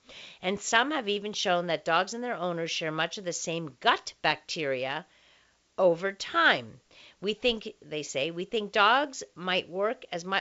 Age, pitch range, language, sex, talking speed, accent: 50-69, 150-190 Hz, English, female, 165 wpm, American